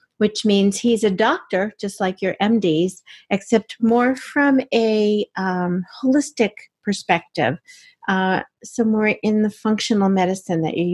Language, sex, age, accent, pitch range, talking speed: English, female, 50-69, American, 175-215 Hz, 130 wpm